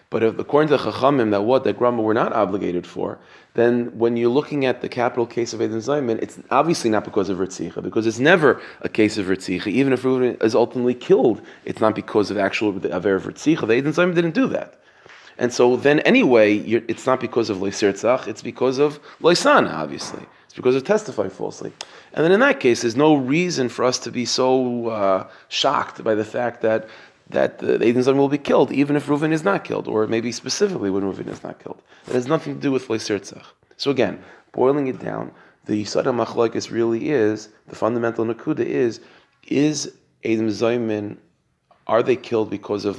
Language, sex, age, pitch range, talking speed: English, male, 30-49, 110-130 Hz, 205 wpm